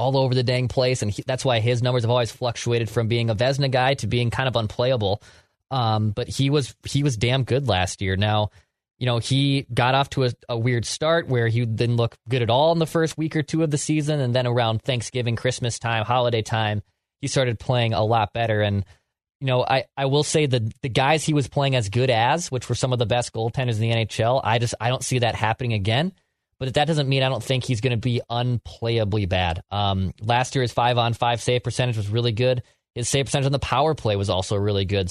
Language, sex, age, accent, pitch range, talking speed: English, male, 20-39, American, 115-130 Hz, 245 wpm